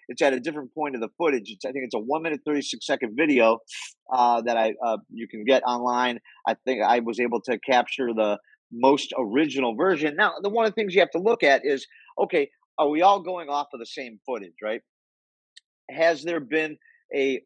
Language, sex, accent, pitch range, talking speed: English, male, American, 125-180 Hz, 220 wpm